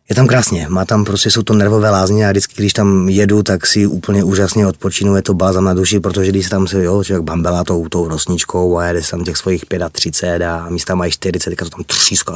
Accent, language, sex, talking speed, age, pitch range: native, Czech, male, 280 wpm, 30-49, 90-100 Hz